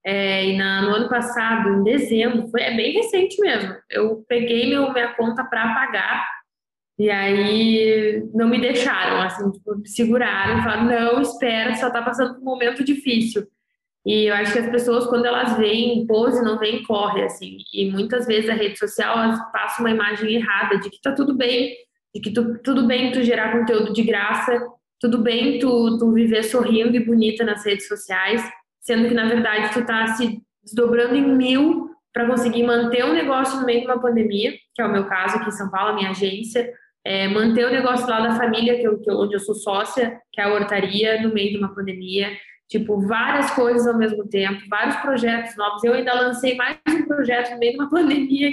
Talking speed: 205 wpm